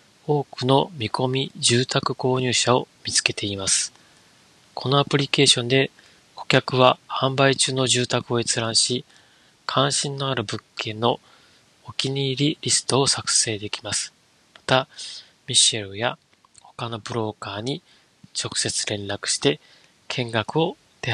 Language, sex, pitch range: Japanese, male, 115-135 Hz